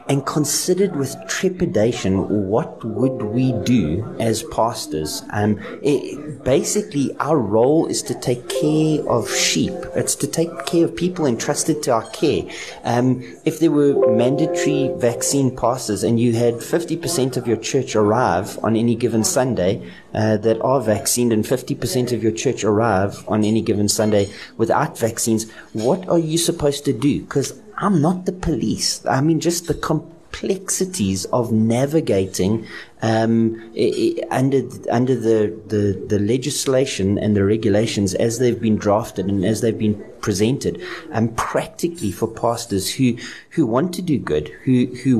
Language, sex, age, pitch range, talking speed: English, male, 30-49, 110-145 Hz, 155 wpm